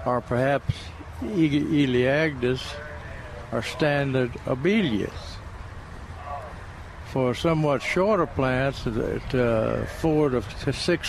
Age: 60-79